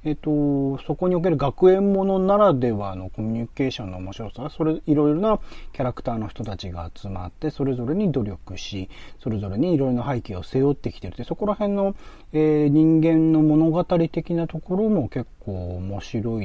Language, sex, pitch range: Japanese, male, 105-170 Hz